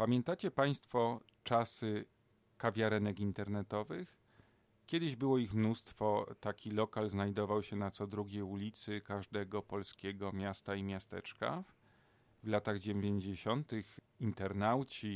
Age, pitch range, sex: 40-59, 100-115 Hz, male